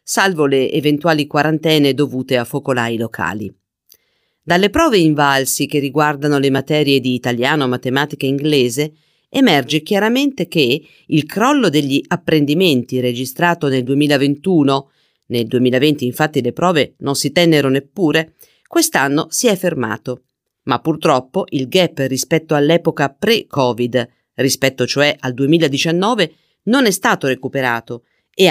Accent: native